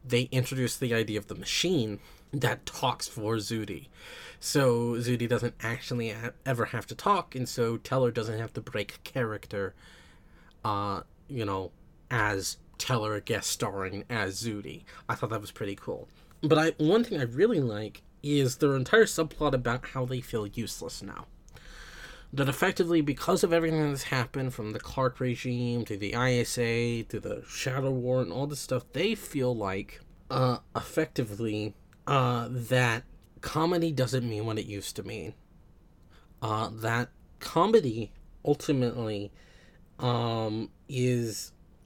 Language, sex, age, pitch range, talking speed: English, male, 20-39, 110-135 Hz, 145 wpm